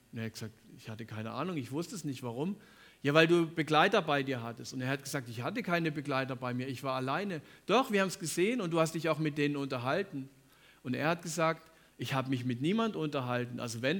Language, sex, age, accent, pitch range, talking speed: German, male, 50-69, German, 130-175 Hz, 250 wpm